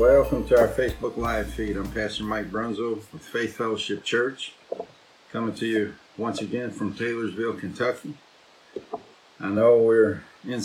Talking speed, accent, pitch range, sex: 145 wpm, American, 110-135 Hz, male